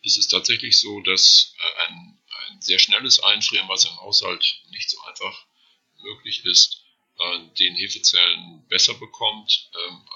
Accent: German